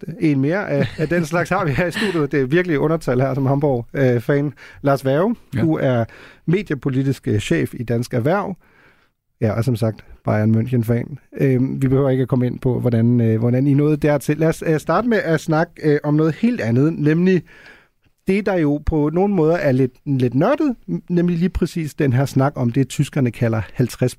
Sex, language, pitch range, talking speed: male, Danish, 125-165 Hz, 190 wpm